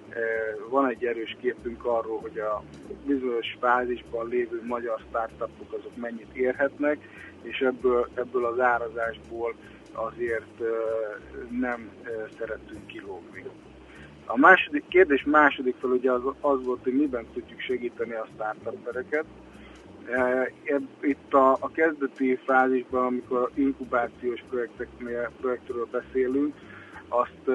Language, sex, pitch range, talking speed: Hungarian, male, 115-135 Hz, 105 wpm